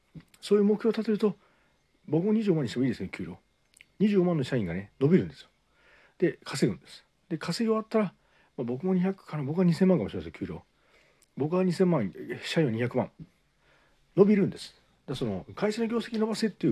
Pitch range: 135-195 Hz